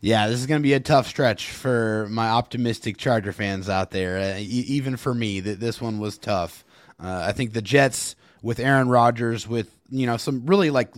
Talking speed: 220 wpm